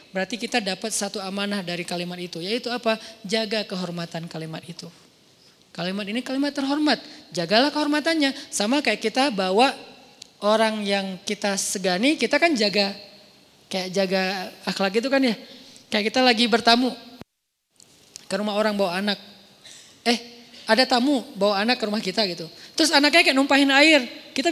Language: Indonesian